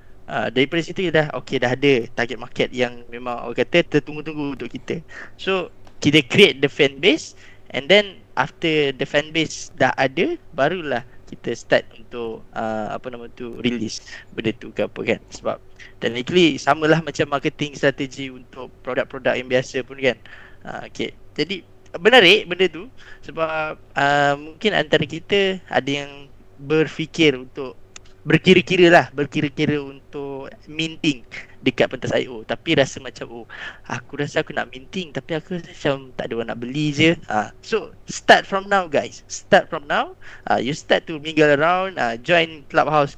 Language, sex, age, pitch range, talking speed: Malay, male, 20-39, 125-160 Hz, 165 wpm